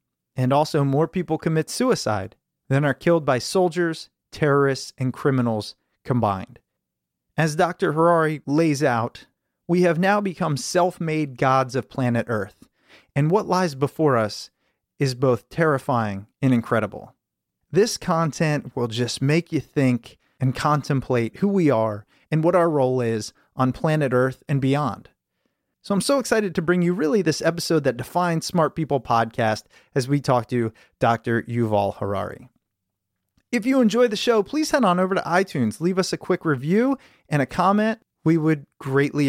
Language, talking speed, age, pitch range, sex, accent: English, 160 wpm, 30-49, 130-185 Hz, male, American